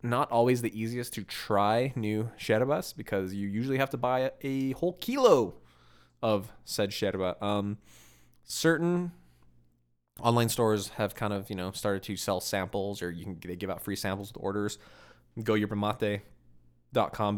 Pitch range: 95-125 Hz